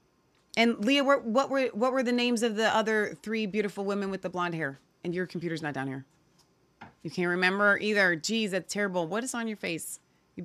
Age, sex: 30-49, female